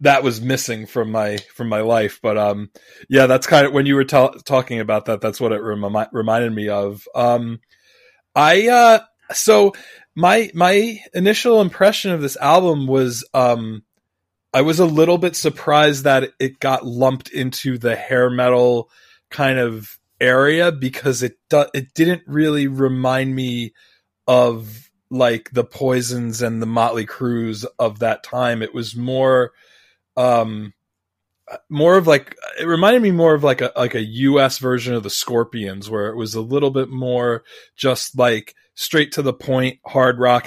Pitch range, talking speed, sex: 115-140 Hz, 170 wpm, male